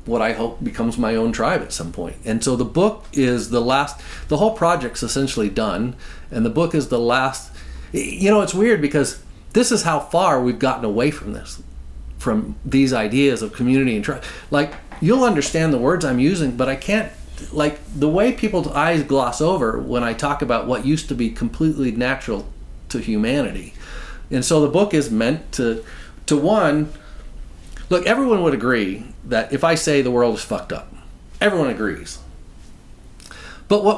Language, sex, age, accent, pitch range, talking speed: English, male, 40-59, American, 115-160 Hz, 185 wpm